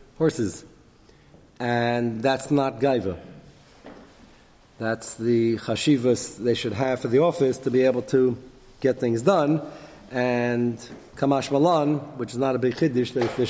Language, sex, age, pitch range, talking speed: English, male, 40-59, 120-145 Hz, 140 wpm